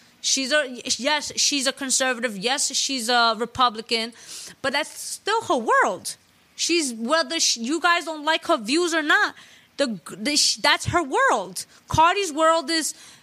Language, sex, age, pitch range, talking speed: English, female, 20-39, 240-330 Hz, 160 wpm